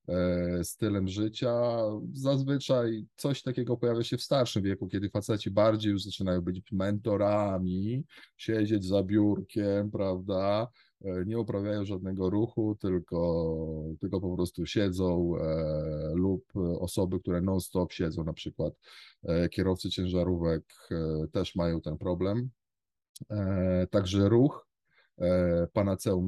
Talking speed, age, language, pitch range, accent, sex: 105 wpm, 20-39, Polish, 90-110 Hz, native, male